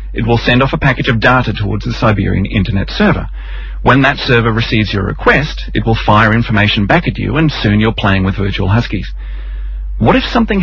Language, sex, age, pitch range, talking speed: English, male, 40-59, 100-130 Hz, 205 wpm